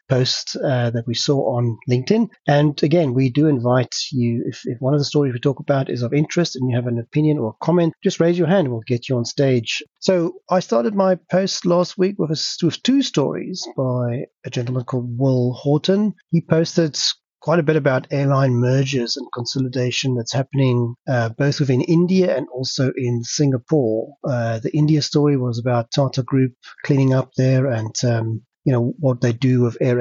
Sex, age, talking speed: male, 30-49, 200 wpm